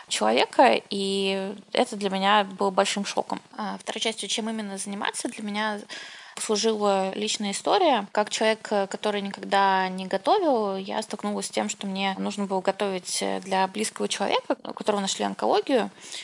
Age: 20-39